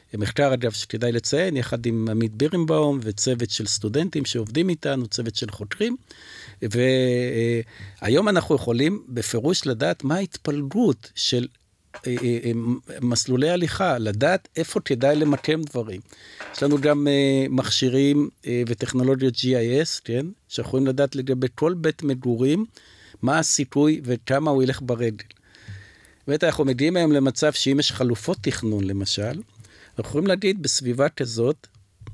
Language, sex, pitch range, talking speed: Hebrew, male, 115-145 Hz, 125 wpm